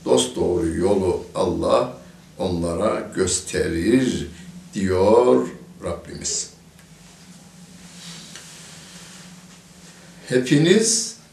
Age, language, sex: 60-79, Turkish, male